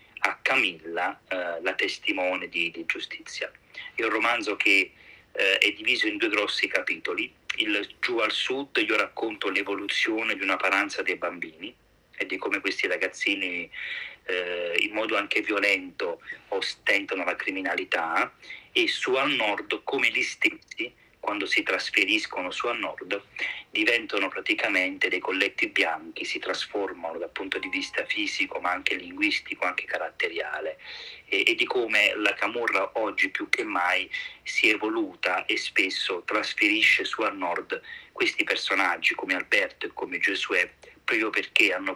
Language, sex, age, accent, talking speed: Italian, male, 40-59, native, 145 wpm